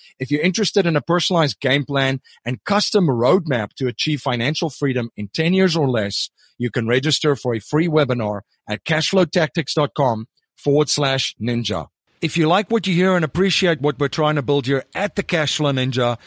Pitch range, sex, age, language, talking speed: 125-160 Hz, male, 40-59, English, 185 wpm